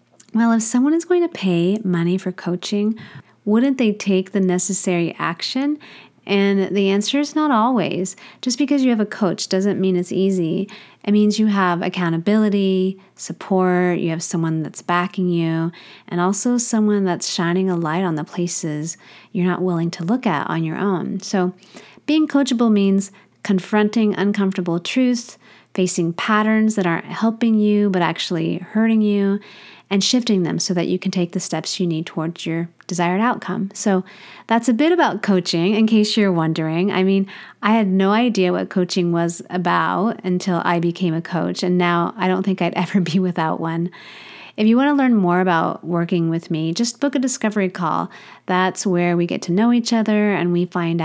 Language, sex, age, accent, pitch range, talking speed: English, female, 40-59, American, 175-210 Hz, 185 wpm